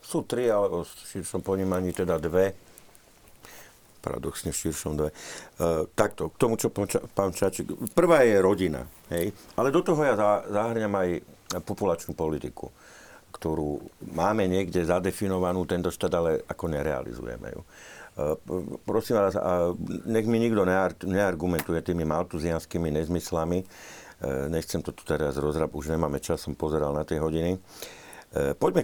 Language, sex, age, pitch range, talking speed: Slovak, male, 50-69, 80-100 Hz, 145 wpm